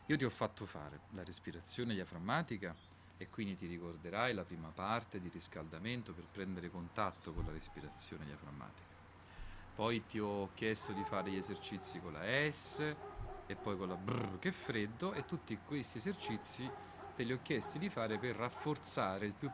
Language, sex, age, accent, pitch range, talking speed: Italian, male, 40-59, native, 95-120 Hz, 175 wpm